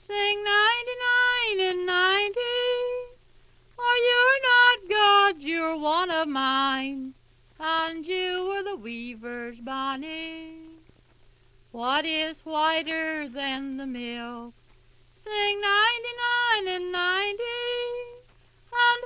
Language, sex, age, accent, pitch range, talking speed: English, female, 60-79, American, 265-405 Hz, 90 wpm